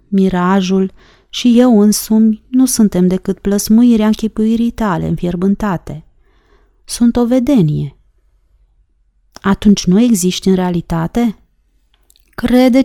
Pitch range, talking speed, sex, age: 165-215 Hz, 100 wpm, female, 30-49